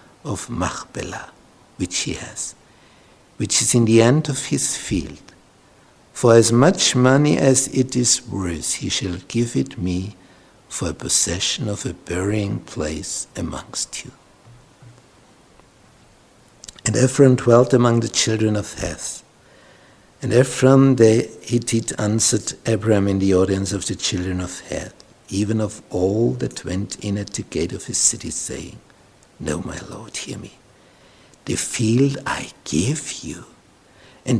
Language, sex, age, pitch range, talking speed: English, male, 60-79, 95-130 Hz, 140 wpm